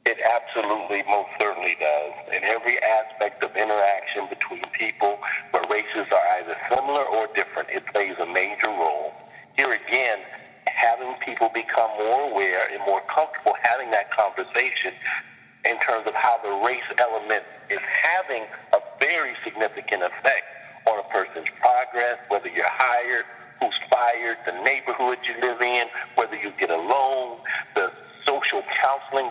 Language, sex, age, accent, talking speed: English, male, 50-69, American, 145 wpm